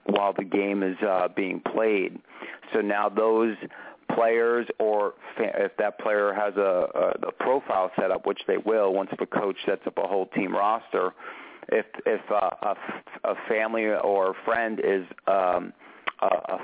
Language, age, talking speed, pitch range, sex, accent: English, 40-59, 175 wpm, 95-110 Hz, male, American